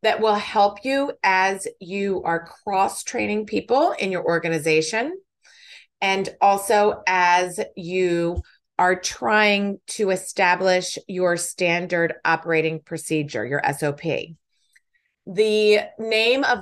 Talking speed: 105 wpm